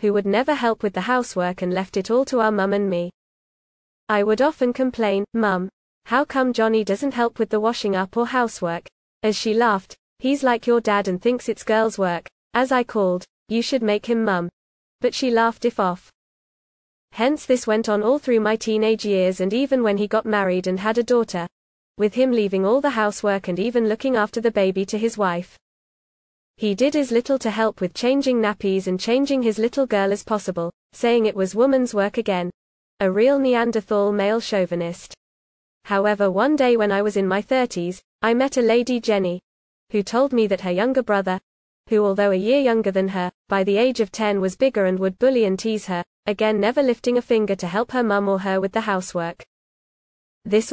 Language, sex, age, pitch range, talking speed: English, female, 20-39, 195-240 Hz, 205 wpm